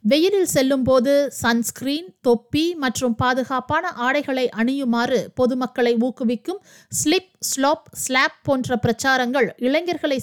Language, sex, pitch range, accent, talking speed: Tamil, female, 220-270 Hz, native, 95 wpm